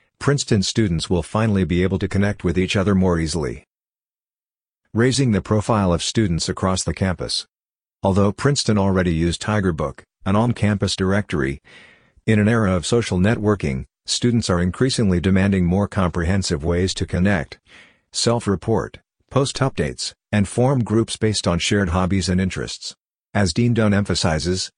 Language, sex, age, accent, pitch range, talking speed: English, male, 50-69, American, 90-105 Hz, 145 wpm